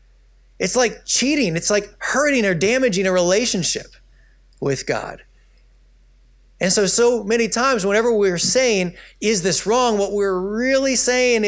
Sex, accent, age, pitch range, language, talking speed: male, American, 30-49, 180-245 Hz, English, 140 wpm